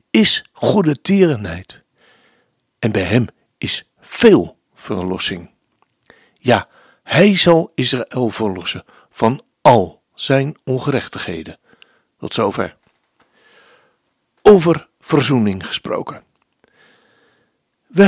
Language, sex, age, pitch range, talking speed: Dutch, male, 60-79, 120-175 Hz, 80 wpm